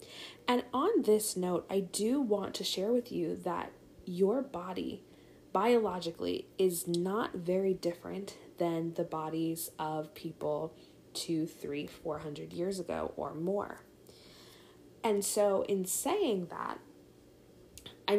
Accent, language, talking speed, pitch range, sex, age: American, English, 125 wpm, 165-195 Hz, female, 20-39